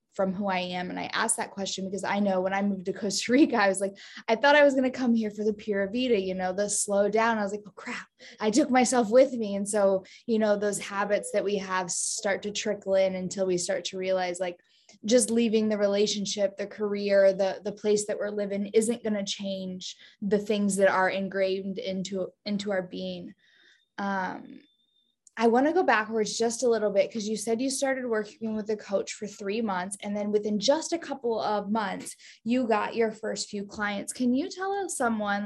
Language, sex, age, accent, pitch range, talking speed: English, female, 10-29, American, 195-230 Hz, 225 wpm